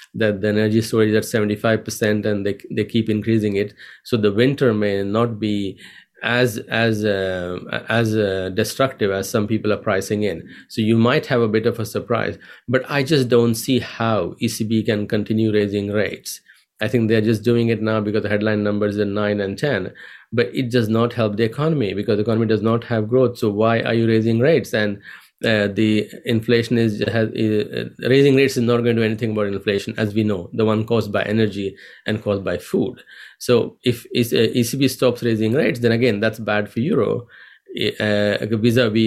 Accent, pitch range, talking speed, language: Indian, 105-115 Hz, 200 wpm, English